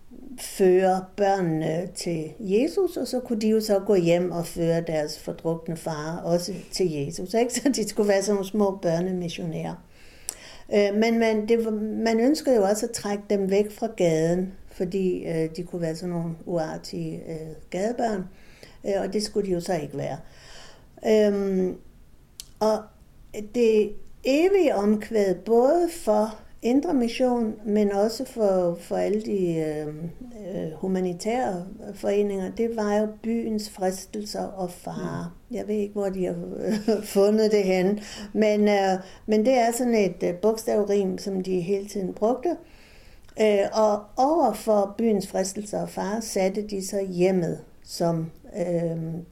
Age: 50-69